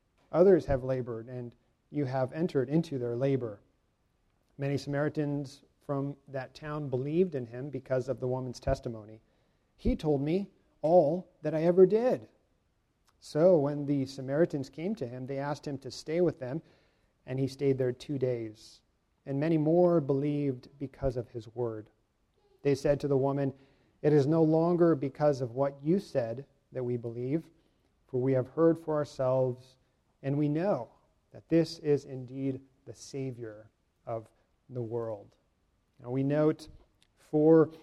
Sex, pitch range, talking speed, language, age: male, 125-155 Hz, 155 wpm, English, 40-59